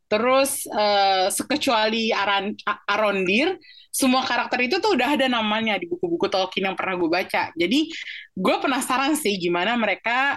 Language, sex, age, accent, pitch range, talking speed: Indonesian, female, 20-39, native, 190-275 Hz, 140 wpm